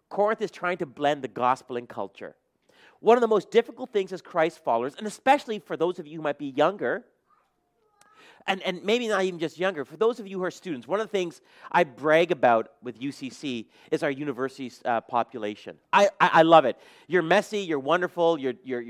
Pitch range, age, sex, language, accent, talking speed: 150-205 Hz, 40-59, male, English, American, 215 wpm